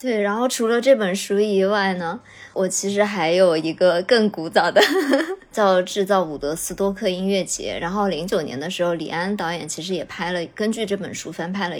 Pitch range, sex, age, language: 170-205 Hz, male, 20-39, Chinese